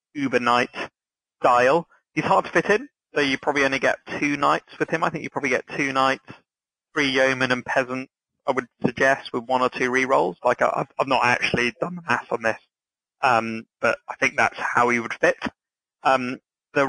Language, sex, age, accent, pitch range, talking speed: English, male, 30-49, British, 125-135 Hz, 205 wpm